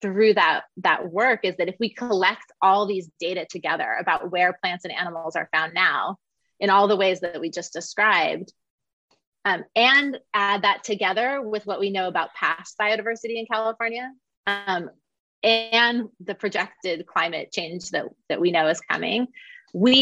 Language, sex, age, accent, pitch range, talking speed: English, female, 30-49, American, 185-225 Hz, 170 wpm